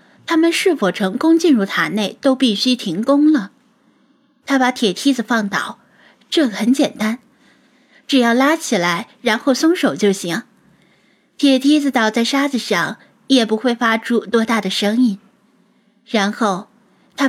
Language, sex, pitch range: Chinese, female, 205-265 Hz